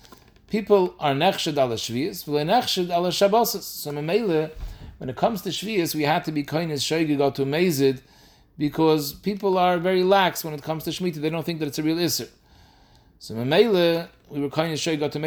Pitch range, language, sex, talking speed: 130-170 Hz, English, male, 195 wpm